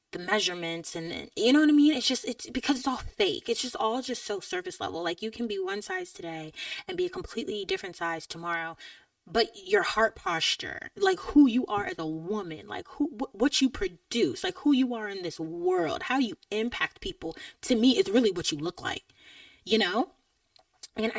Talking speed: 210 wpm